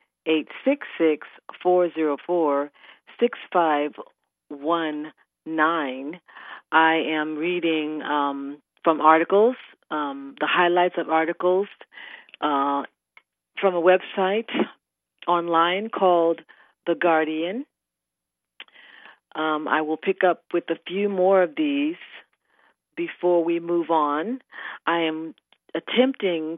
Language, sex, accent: English, female, American